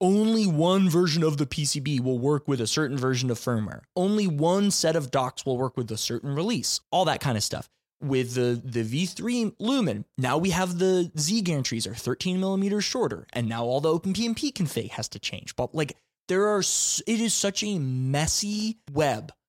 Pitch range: 120-180 Hz